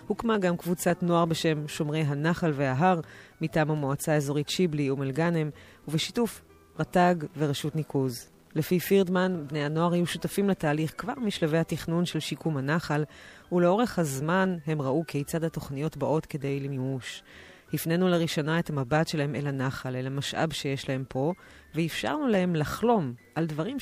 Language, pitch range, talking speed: Hebrew, 140-175 Hz, 145 wpm